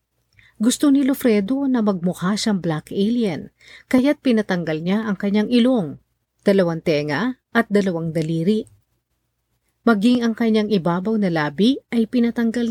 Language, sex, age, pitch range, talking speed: Filipino, female, 40-59, 165-235 Hz, 125 wpm